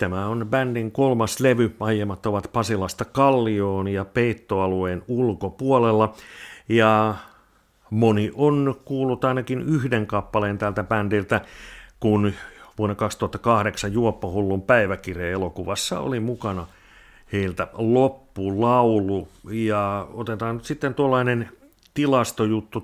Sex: male